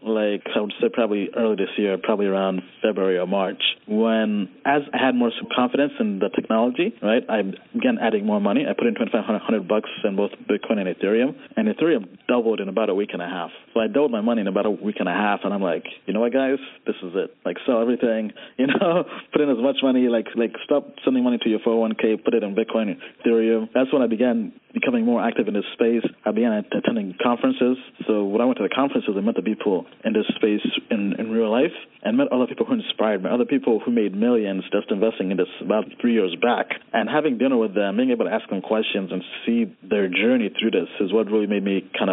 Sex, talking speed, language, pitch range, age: male, 240 wpm, English, 110-145 Hz, 30-49